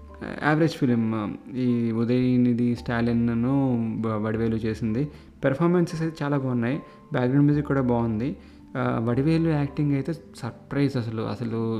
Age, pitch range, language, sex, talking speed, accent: 30-49, 115-135 Hz, Telugu, male, 110 wpm, native